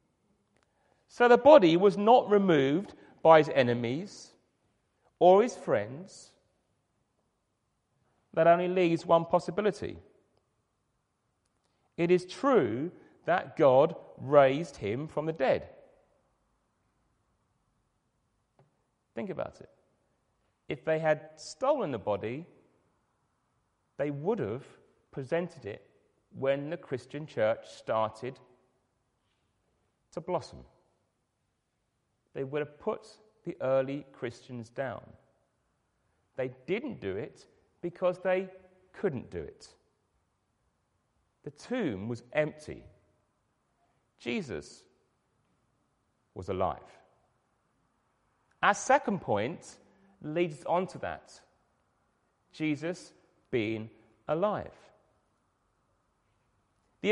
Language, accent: English, British